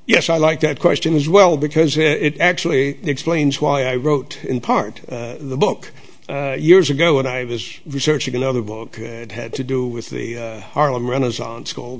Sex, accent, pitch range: male, American, 120-150 Hz